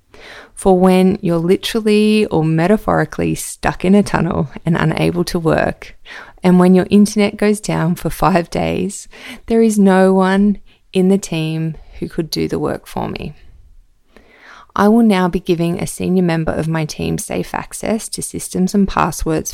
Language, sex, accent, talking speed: English, female, Australian, 165 wpm